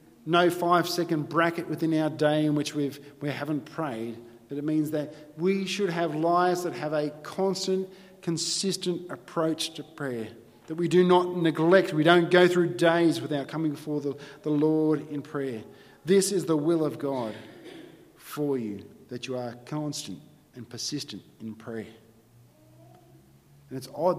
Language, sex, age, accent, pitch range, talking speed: English, male, 40-59, Australian, 130-175 Hz, 160 wpm